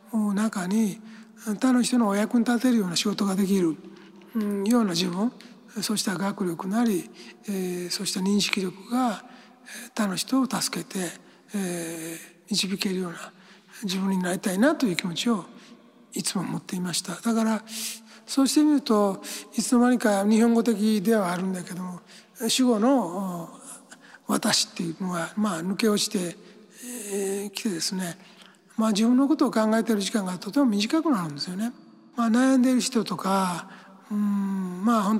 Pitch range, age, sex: 190-235 Hz, 60-79, male